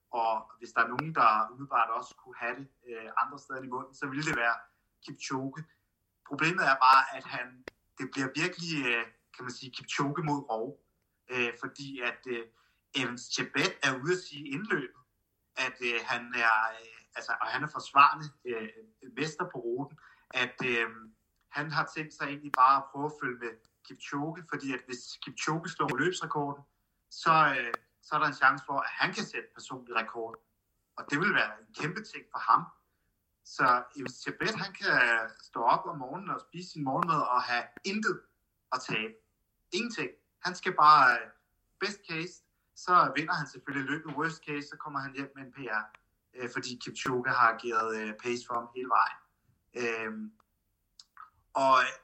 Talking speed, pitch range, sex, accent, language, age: 175 wpm, 115-145 Hz, male, native, Danish, 30-49